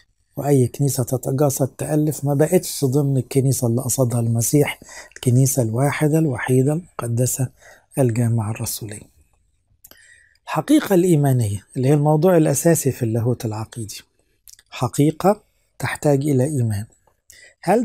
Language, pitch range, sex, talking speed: English, 125-160 Hz, male, 100 wpm